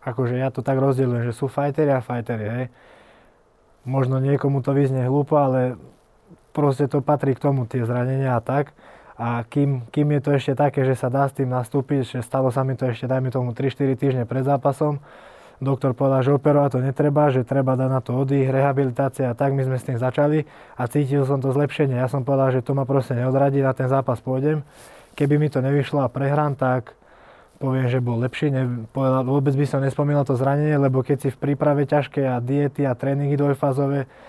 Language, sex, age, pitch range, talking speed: Slovak, male, 20-39, 130-140 Hz, 205 wpm